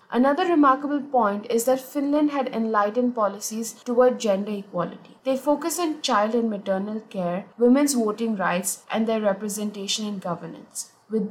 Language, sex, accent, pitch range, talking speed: English, female, Indian, 200-250 Hz, 150 wpm